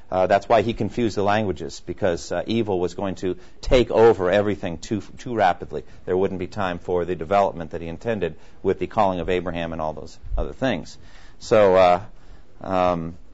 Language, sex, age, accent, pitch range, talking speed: English, male, 50-69, American, 100-135 Hz, 190 wpm